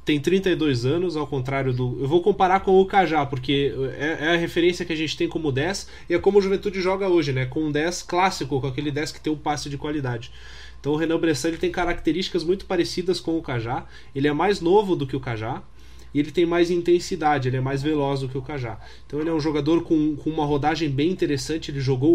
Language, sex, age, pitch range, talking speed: Portuguese, male, 20-39, 135-170 Hz, 245 wpm